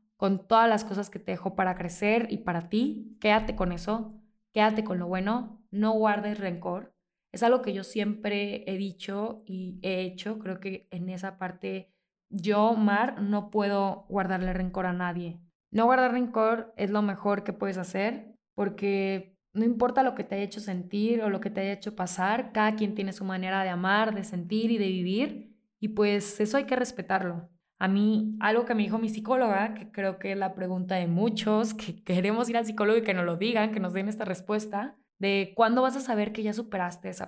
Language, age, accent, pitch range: Spanish, 20-39, Mexican, 190-220 Hz